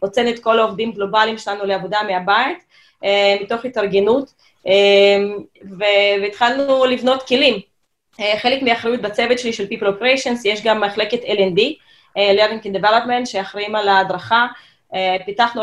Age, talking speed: 20-39, 120 wpm